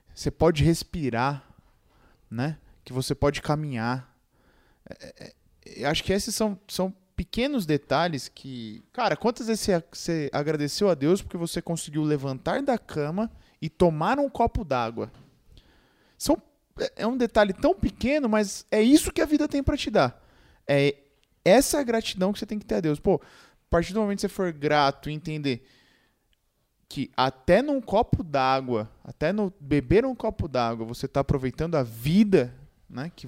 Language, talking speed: Portuguese, 170 wpm